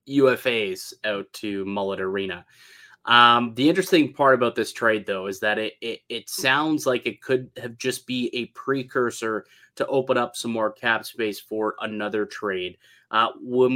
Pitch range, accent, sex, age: 115-155 Hz, American, male, 20-39